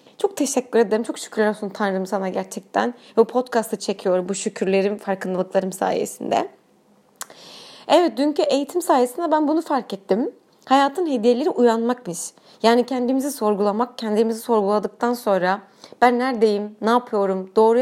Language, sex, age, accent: Turkish, female, 30-49, native